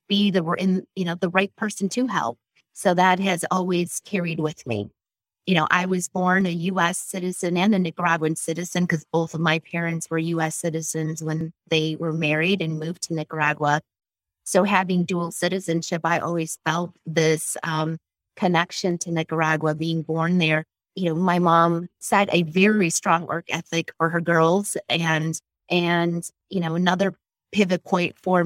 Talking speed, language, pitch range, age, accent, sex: 175 wpm, English, 165-190 Hz, 30-49, American, female